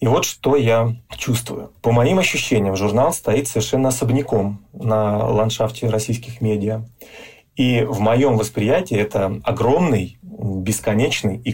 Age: 30-49